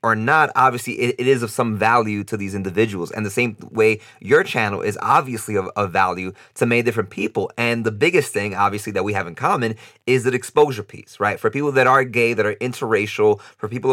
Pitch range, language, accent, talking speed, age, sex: 105-130 Hz, English, American, 220 wpm, 30-49, male